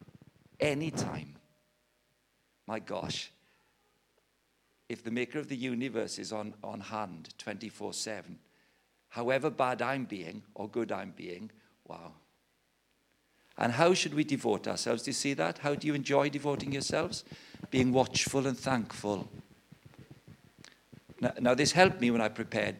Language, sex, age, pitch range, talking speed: English, male, 50-69, 115-155 Hz, 135 wpm